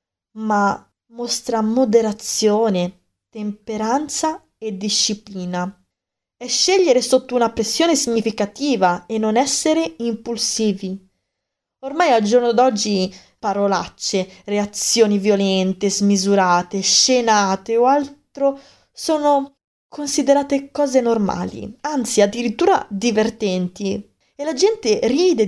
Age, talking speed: 20-39, 90 wpm